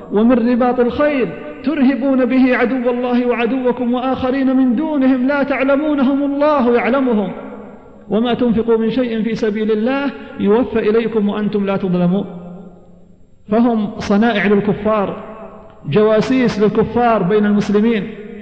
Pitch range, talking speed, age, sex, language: 215-255 Hz, 110 wpm, 50-69, male, Arabic